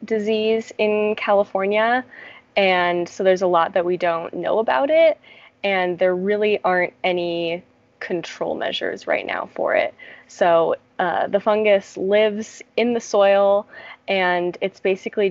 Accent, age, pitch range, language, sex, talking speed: American, 10-29, 180-220 Hz, English, female, 140 wpm